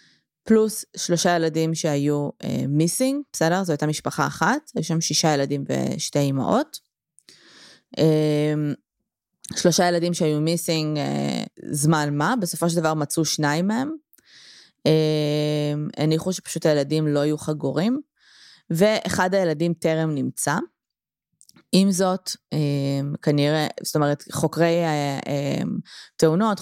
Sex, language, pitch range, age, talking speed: female, Hebrew, 145-175 Hz, 20-39, 110 wpm